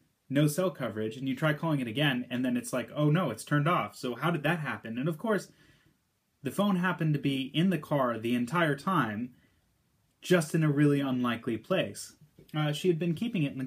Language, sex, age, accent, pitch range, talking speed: English, male, 30-49, American, 125-160 Hz, 225 wpm